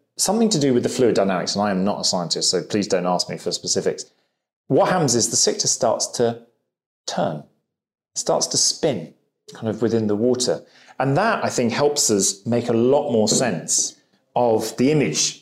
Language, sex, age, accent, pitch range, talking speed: English, male, 30-49, British, 100-135 Hz, 200 wpm